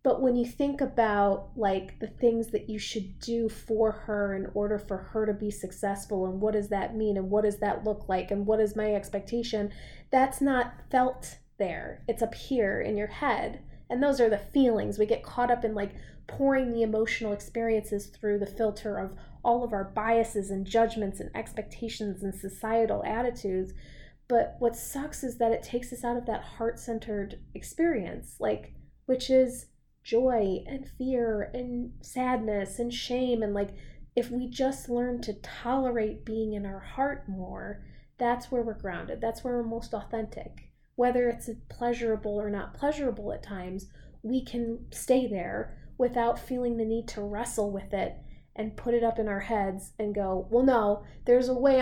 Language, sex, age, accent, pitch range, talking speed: English, female, 30-49, American, 205-245 Hz, 180 wpm